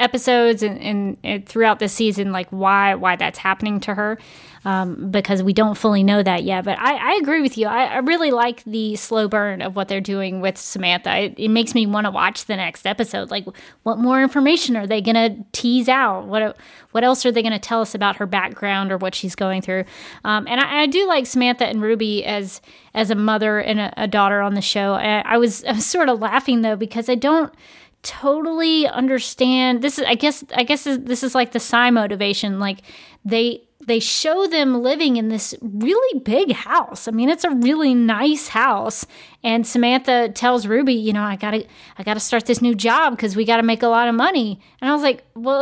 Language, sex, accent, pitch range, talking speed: English, female, American, 210-260 Hz, 220 wpm